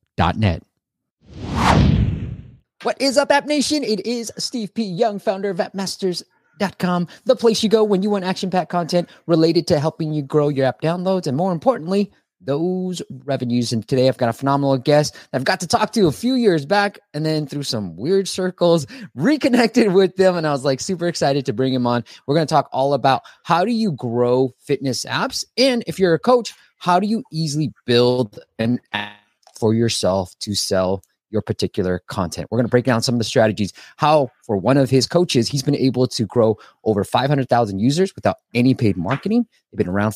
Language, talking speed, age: English, 200 wpm, 20-39